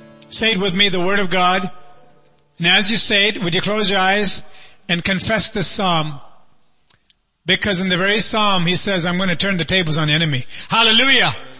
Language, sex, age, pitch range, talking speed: English, male, 40-59, 170-205 Hz, 200 wpm